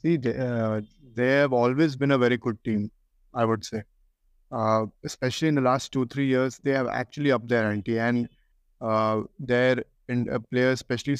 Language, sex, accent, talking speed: English, male, Indian, 190 wpm